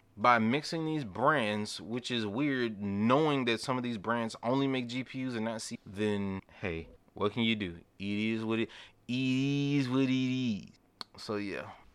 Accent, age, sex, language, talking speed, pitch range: American, 20-39, male, English, 165 wpm, 105-140 Hz